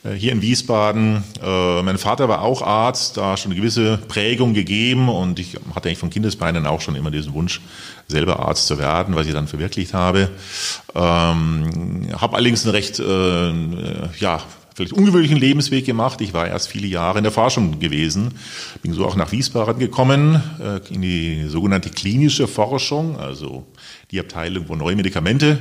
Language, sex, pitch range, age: German, male, 95-120 Hz, 40-59